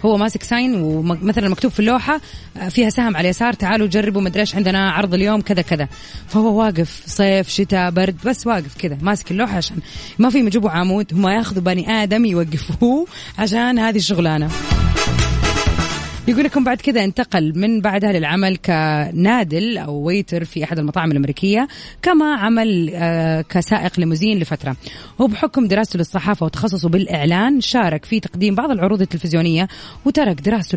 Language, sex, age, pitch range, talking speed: Arabic, female, 20-39, 165-225 Hz, 145 wpm